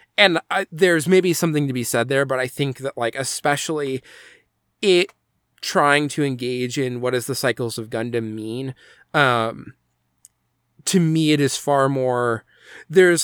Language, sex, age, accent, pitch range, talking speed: English, male, 20-39, American, 115-150 Hz, 160 wpm